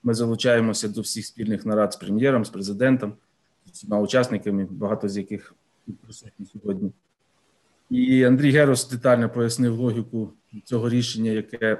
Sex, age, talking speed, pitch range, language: male, 30-49, 135 wpm, 115-130 Hz, Ukrainian